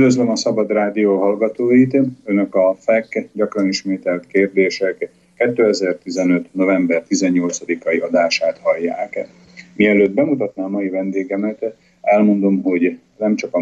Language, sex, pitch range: Slovak, male, 90-120 Hz